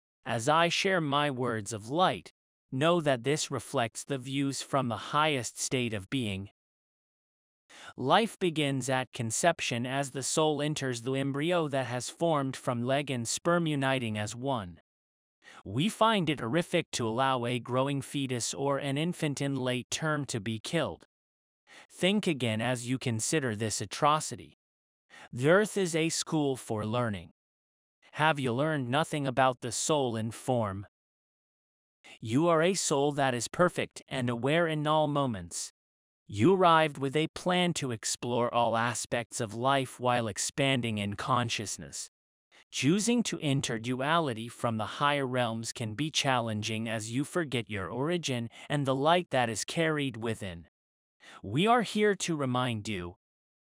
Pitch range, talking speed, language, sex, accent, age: 115-150 Hz, 150 wpm, English, male, American, 30-49